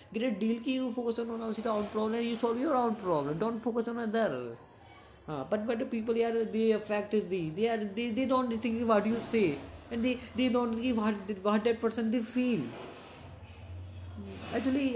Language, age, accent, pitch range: Hindi, 20-39, native, 195-235 Hz